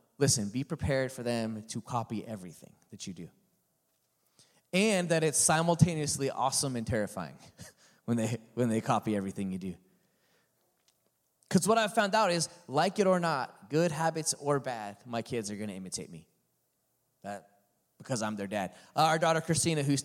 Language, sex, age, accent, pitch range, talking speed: English, male, 20-39, American, 120-165 Hz, 170 wpm